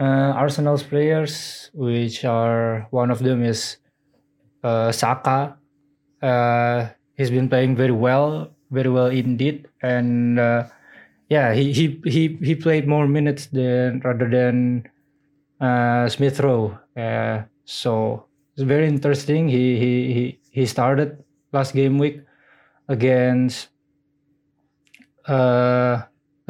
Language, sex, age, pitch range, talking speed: English, male, 20-39, 125-145 Hz, 115 wpm